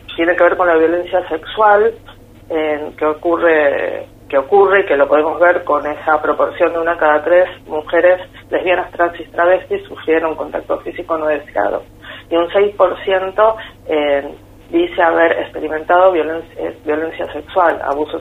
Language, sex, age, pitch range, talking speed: Spanish, female, 40-59, 160-195 Hz, 150 wpm